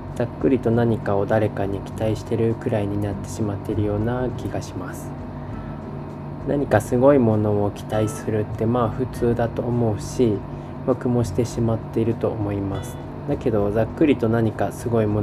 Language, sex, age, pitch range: Japanese, male, 20-39, 105-125 Hz